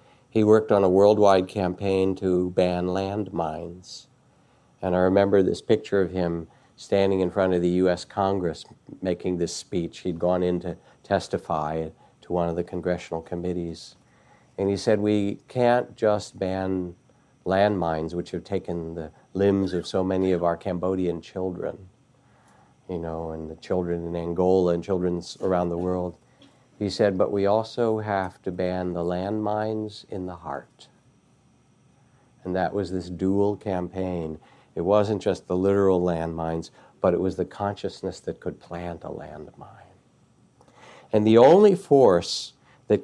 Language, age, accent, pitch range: English, 50-69, American, 90-105 Hz